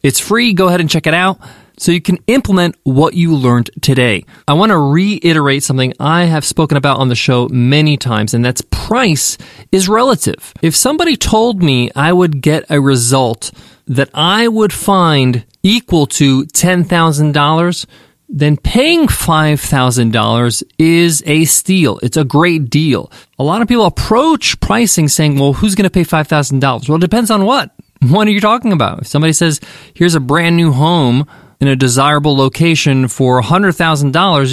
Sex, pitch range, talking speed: male, 140-185 Hz, 170 wpm